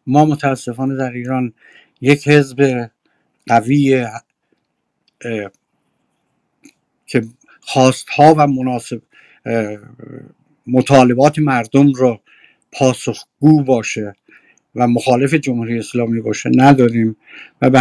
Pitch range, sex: 115-135 Hz, male